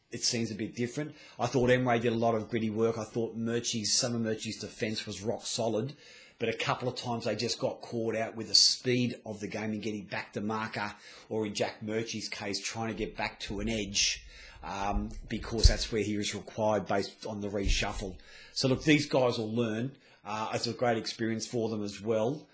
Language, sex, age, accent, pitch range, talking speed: English, male, 30-49, Australian, 105-120 Hz, 220 wpm